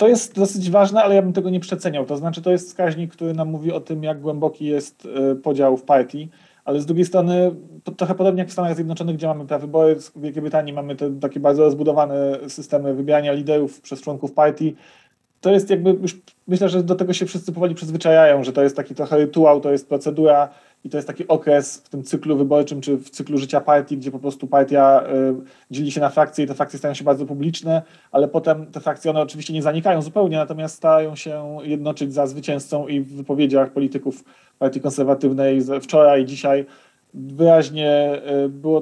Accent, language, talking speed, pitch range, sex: native, Polish, 200 wpm, 145-160 Hz, male